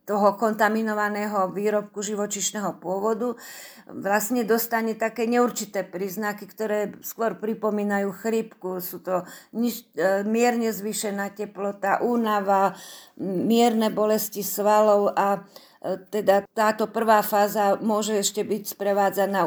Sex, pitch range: female, 195-220 Hz